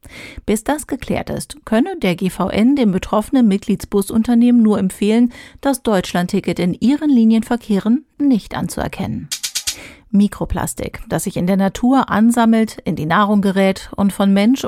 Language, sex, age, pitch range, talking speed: German, female, 40-59, 195-235 Hz, 135 wpm